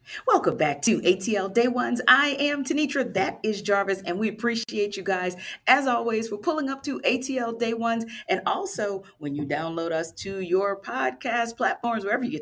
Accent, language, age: American, English, 40-59